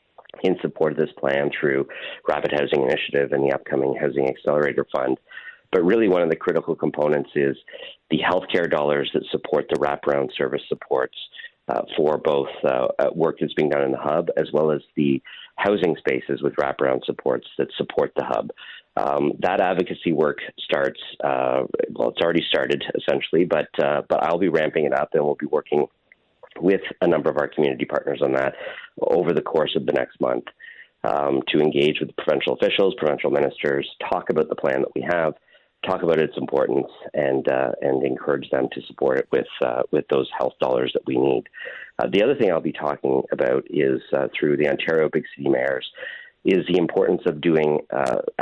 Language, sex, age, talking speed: English, male, 40-59, 190 wpm